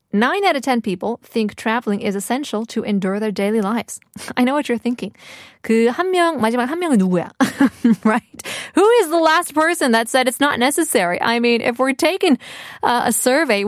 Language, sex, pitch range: Korean, female, 195-275 Hz